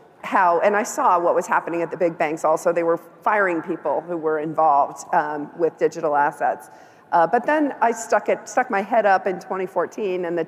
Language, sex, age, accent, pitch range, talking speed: English, female, 50-69, American, 175-210 Hz, 210 wpm